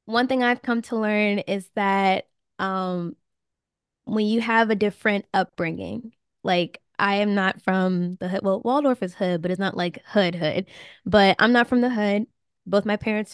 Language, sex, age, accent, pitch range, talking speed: English, female, 10-29, American, 185-220 Hz, 185 wpm